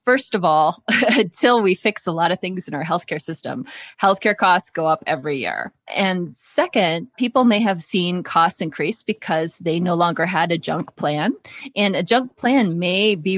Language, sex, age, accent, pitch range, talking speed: English, female, 20-39, American, 170-220 Hz, 190 wpm